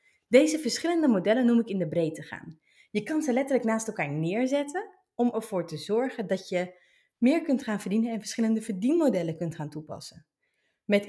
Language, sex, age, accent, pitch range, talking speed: Dutch, female, 30-49, Dutch, 180-255 Hz, 180 wpm